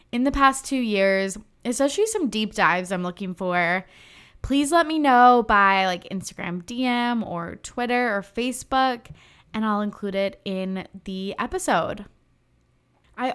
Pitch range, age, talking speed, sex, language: 200-245 Hz, 20-39, 145 wpm, female, English